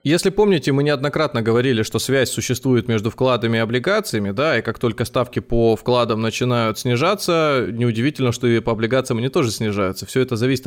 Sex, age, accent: male, 20-39, native